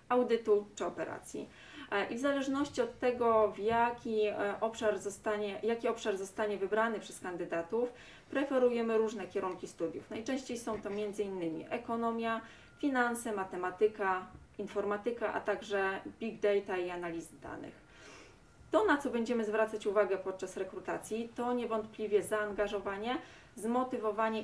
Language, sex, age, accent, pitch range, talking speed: Polish, female, 20-39, native, 200-240 Hz, 120 wpm